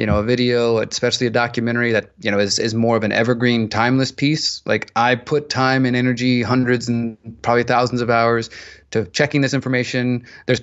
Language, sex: English, male